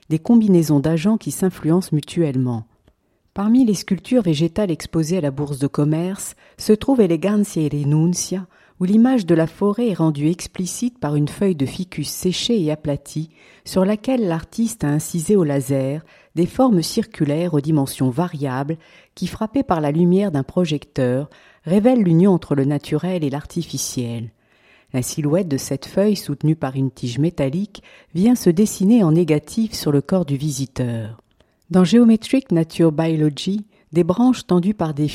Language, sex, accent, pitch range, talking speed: French, female, French, 145-195 Hz, 160 wpm